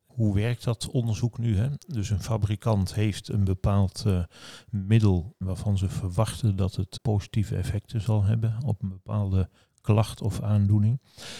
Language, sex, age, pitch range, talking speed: Dutch, male, 40-59, 95-115 Hz, 150 wpm